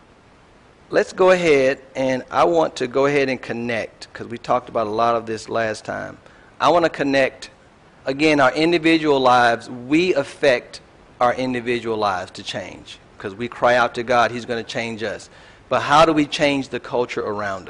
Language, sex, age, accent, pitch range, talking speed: English, male, 50-69, American, 130-150 Hz, 185 wpm